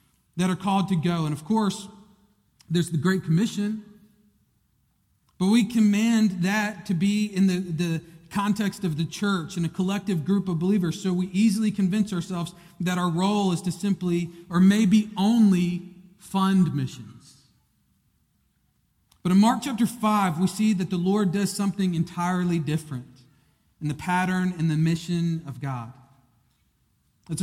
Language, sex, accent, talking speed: English, male, American, 155 wpm